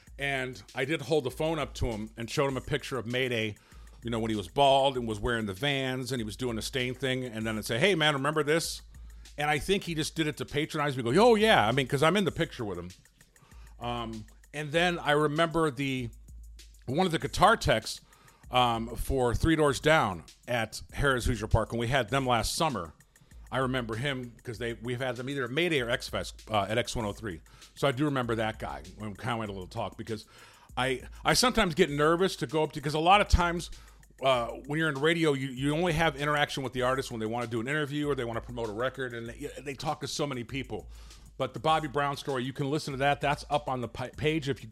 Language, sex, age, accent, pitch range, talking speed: English, male, 40-59, American, 115-150 Hz, 250 wpm